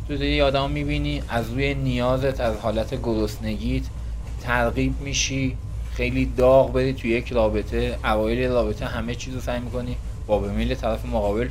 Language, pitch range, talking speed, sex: Persian, 100-115 Hz, 155 wpm, male